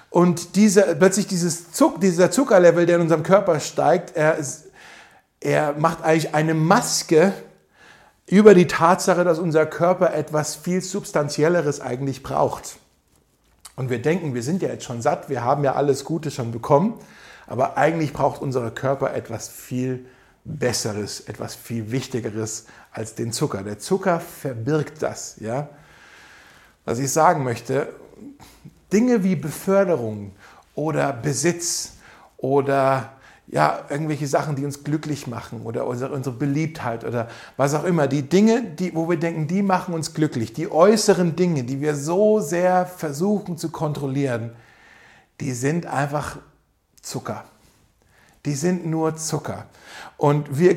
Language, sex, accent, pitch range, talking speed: German, male, German, 135-180 Hz, 140 wpm